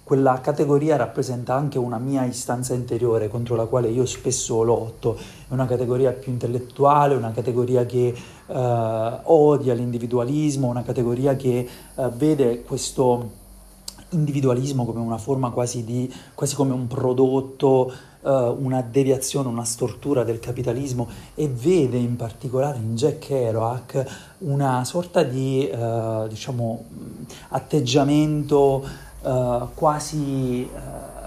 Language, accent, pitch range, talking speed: Italian, native, 120-140 Hz, 125 wpm